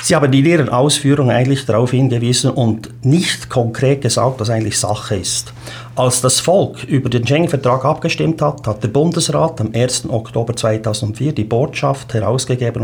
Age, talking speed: 50-69, 160 wpm